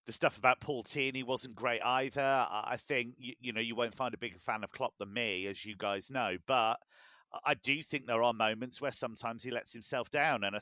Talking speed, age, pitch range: 235 wpm, 40-59, 105-130 Hz